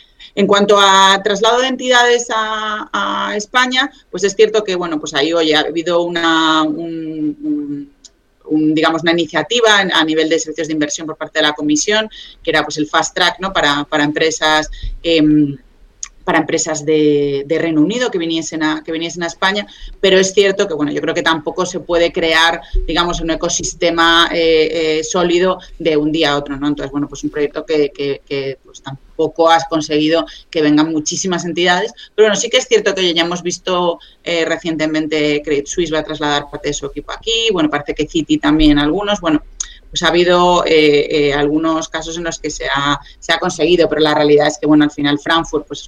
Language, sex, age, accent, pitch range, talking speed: Spanish, female, 30-49, Spanish, 150-175 Hz, 205 wpm